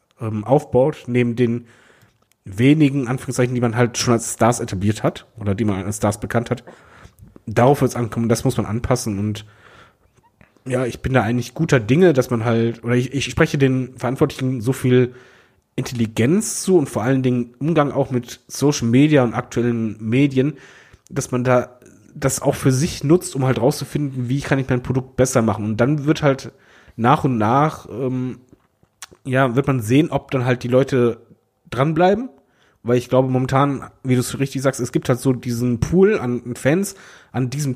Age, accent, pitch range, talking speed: 30-49, German, 120-140 Hz, 185 wpm